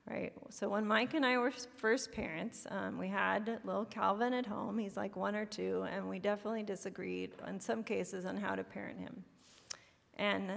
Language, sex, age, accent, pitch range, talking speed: English, female, 30-49, American, 190-230 Hz, 195 wpm